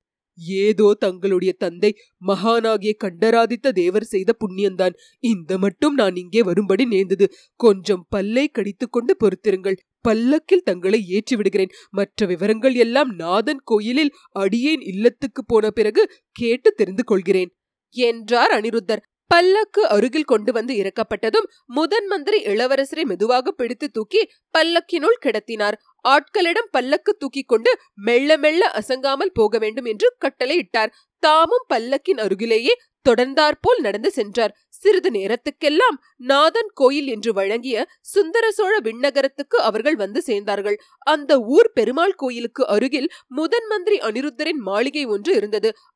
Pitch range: 220-355 Hz